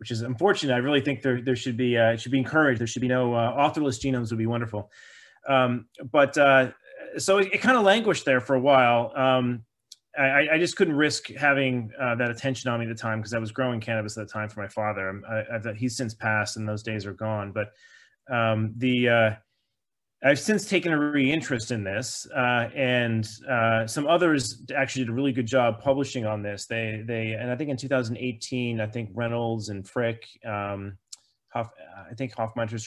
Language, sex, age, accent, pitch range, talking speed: English, male, 30-49, American, 110-135 Hz, 215 wpm